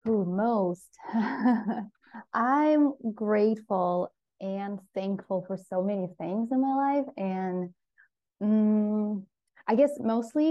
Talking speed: 105 wpm